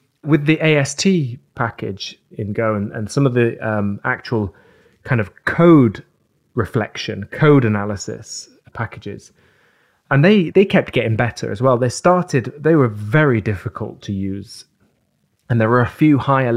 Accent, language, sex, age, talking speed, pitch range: British, English, male, 30-49, 150 wpm, 110-135 Hz